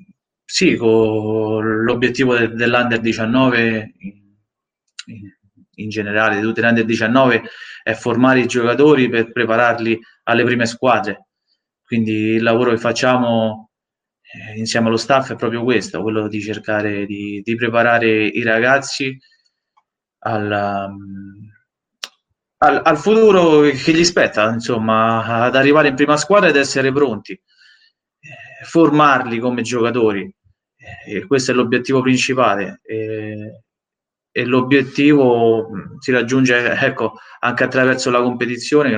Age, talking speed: 20-39, 115 wpm